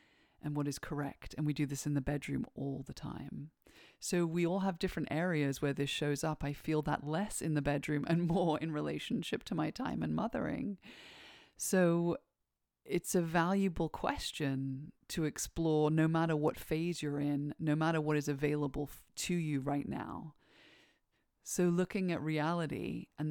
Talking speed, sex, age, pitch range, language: 170 wpm, female, 30-49, 145-180 Hz, English